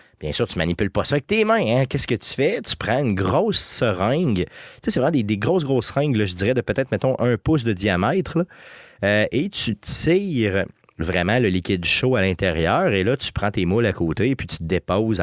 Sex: male